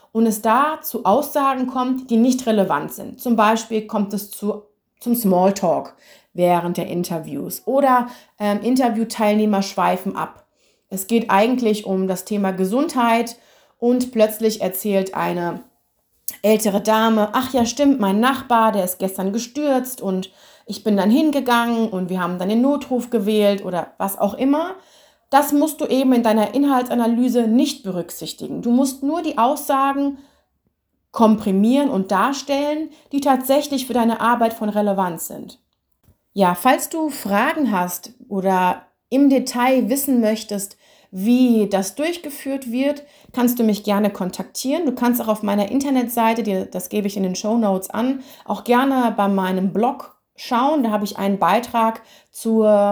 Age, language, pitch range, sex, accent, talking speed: 30-49, German, 200-265 Hz, female, German, 150 wpm